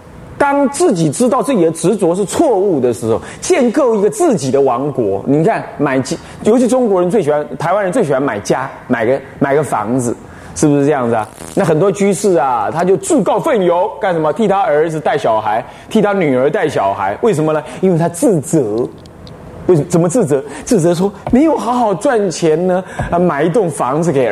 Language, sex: Chinese, male